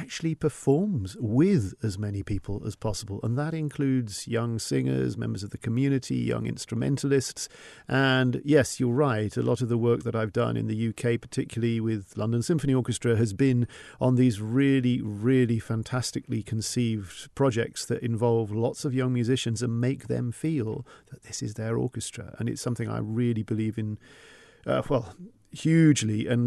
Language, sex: English, male